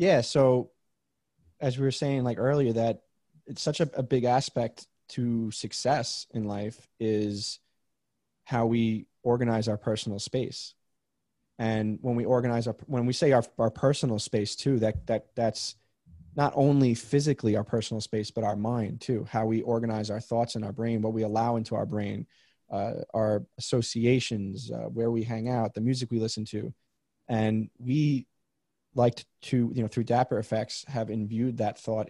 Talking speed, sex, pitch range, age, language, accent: 170 wpm, male, 110-125 Hz, 20-39, English, American